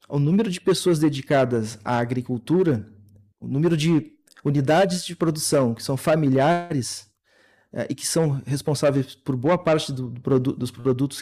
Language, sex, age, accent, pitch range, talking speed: Portuguese, male, 40-59, Brazilian, 125-150 Hz, 140 wpm